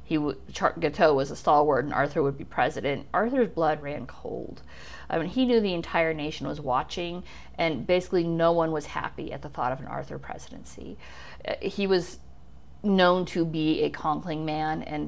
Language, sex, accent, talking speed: English, female, American, 185 wpm